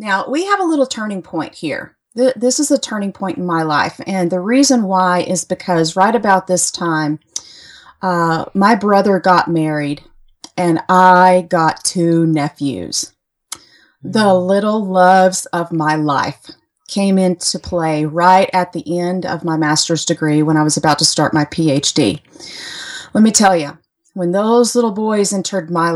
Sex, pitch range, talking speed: female, 170-230 Hz, 165 wpm